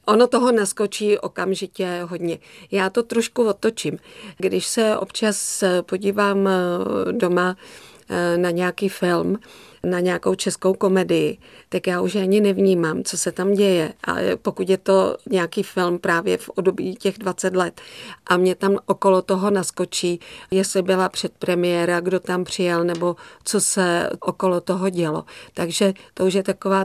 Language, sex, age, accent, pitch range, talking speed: Czech, female, 40-59, native, 175-195 Hz, 145 wpm